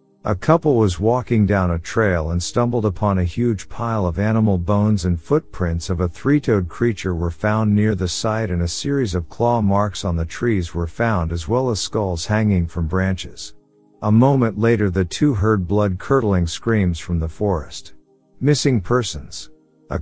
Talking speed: 175 wpm